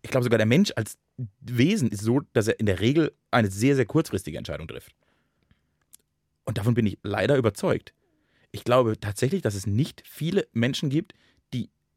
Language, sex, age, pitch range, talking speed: German, male, 30-49, 110-150 Hz, 180 wpm